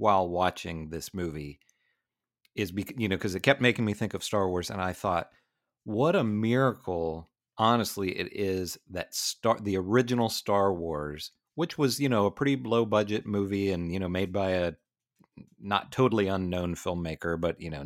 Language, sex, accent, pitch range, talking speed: English, male, American, 90-110 Hz, 180 wpm